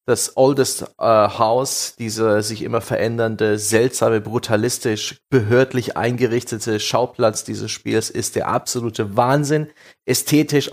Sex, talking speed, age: male, 110 wpm, 30-49